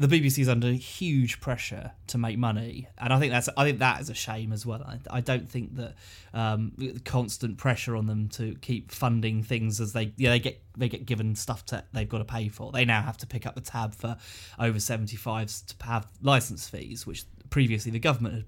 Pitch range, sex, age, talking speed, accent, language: 110-125 Hz, male, 20-39, 225 wpm, British, English